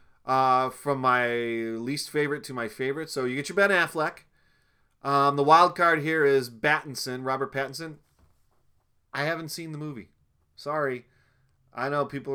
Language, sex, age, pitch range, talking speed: English, male, 30-49, 125-155 Hz, 155 wpm